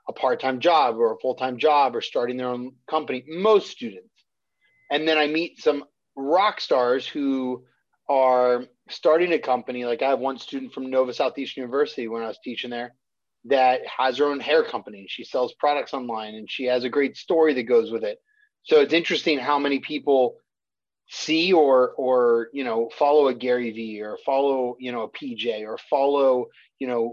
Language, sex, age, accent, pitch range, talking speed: English, male, 30-49, American, 125-160 Hz, 190 wpm